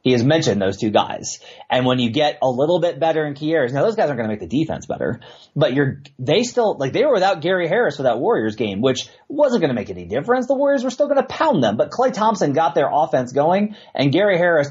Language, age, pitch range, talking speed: English, 30-49, 125-165 Hz, 265 wpm